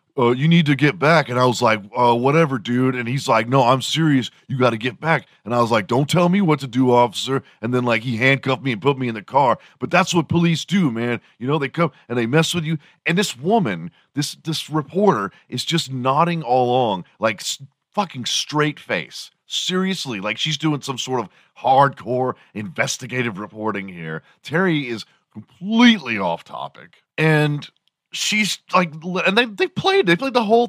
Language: English